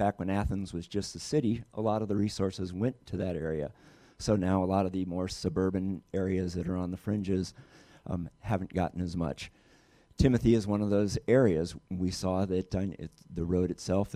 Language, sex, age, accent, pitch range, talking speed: English, male, 50-69, American, 90-100 Hz, 210 wpm